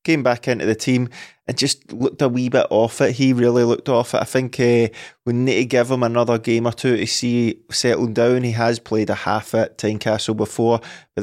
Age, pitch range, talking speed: 20-39, 110-125 Hz, 235 wpm